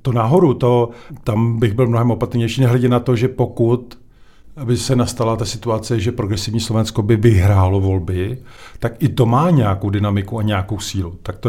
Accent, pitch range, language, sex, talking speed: native, 105-120 Hz, Czech, male, 185 wpm